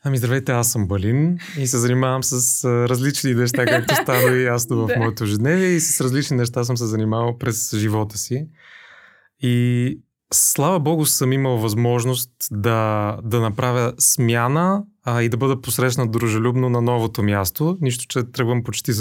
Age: 30-49